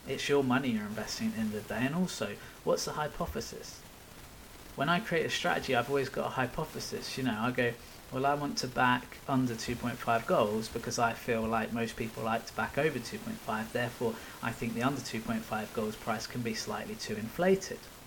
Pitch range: 115-140 Hz